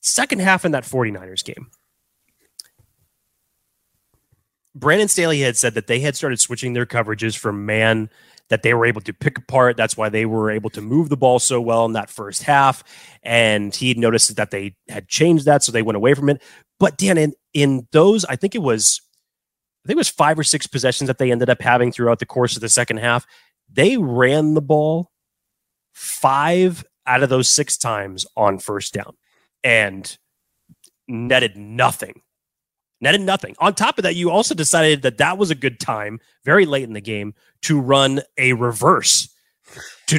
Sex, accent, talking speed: male, American, 185 wpm